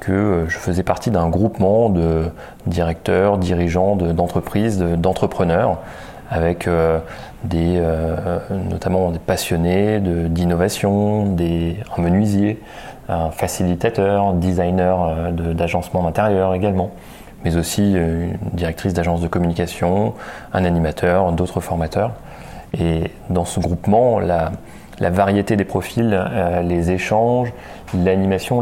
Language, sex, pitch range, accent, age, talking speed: French, male, 85-100 Hz, French, 30-49, 115 wpm